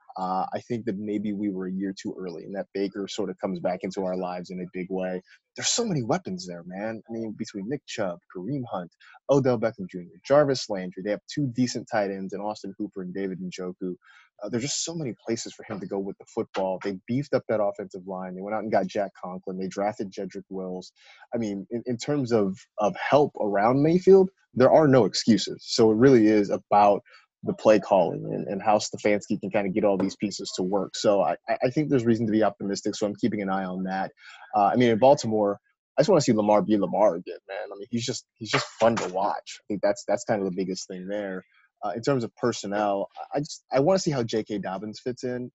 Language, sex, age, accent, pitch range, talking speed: English, male, 20-39, American, 95-120 Hz, 245 wpm